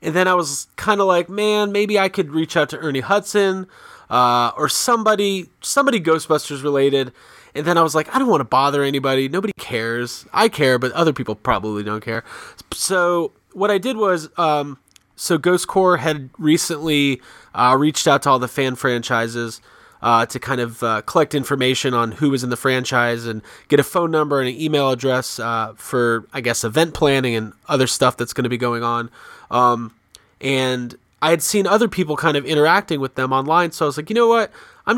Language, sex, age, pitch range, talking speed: English, male, 30-49, 125-175 Hz, 210 wpm